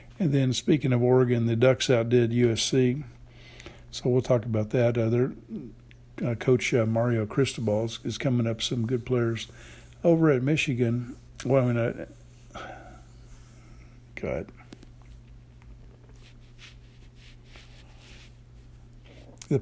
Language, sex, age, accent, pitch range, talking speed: English, male, 60-79, American, 115-125 Hz, 105 wpm